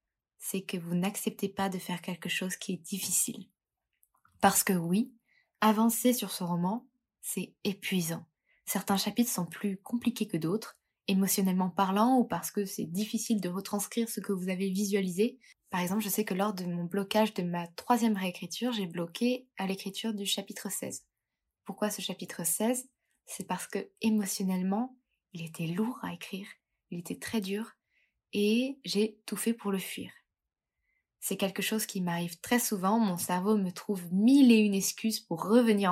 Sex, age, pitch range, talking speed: female, 20-39, 190-225 Hz, 170 wpm